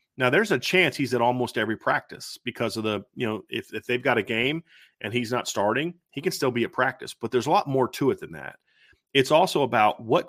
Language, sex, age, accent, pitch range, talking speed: English, male, 40-59, American, 110-135 Hz, 250 wpm